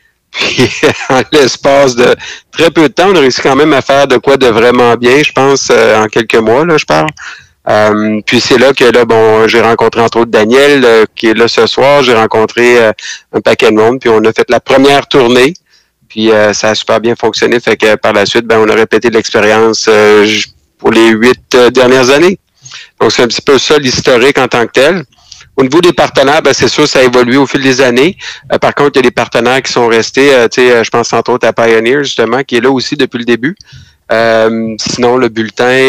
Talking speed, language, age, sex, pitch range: 235 wpm, French, 50-69, male, 110-130 Hz